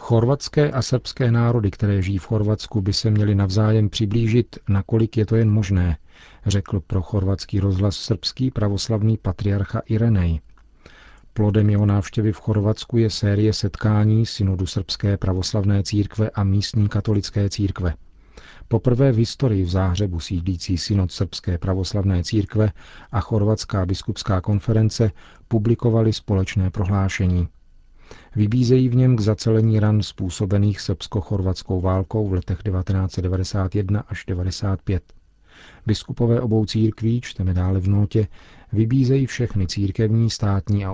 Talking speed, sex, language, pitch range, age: 125 wpm, male, Czech, 95-110 Hz, 40-59